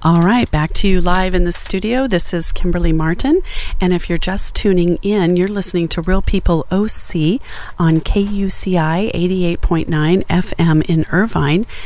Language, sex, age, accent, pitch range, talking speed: English, female, 40-59, American, 160-190 Hz, 155 wpm